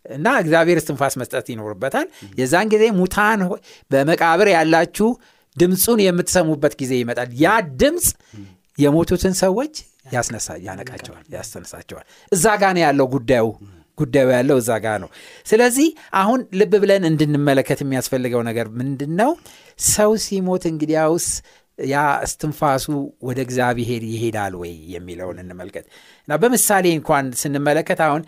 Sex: male